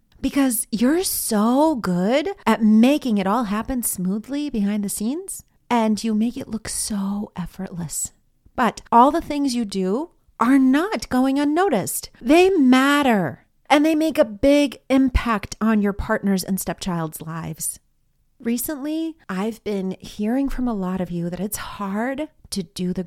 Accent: American